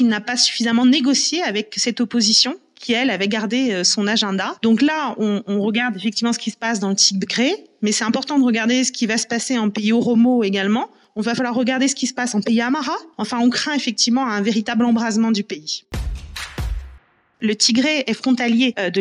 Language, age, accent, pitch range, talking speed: French, 30-49, French, 205-255 Hz, 210 wpm